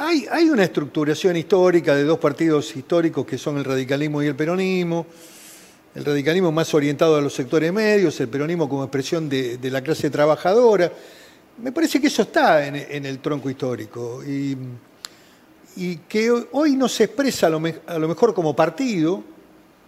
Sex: male